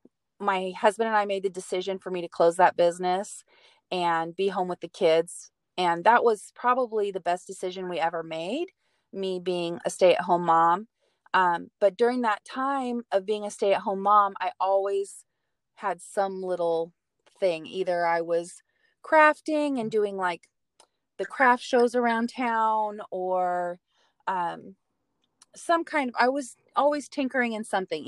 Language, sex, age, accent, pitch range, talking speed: English, female, 30-49, American, 175-220 Hz, 165 wpm